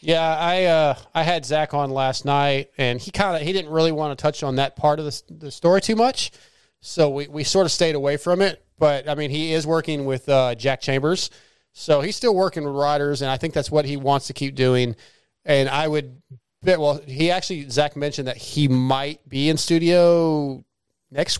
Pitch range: 140-180 Hz